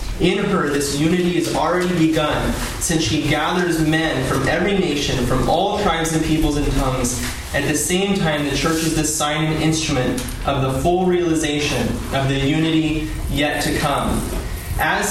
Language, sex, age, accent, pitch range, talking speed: English, male, 20-39, American, 130-165 Hz, 170 wpm